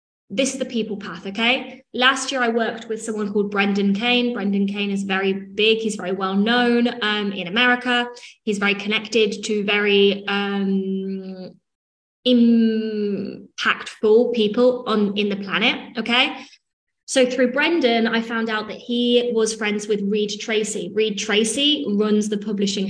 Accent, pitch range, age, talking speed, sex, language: British, 205-245 Hz, 20-39, 150 wpm, female, English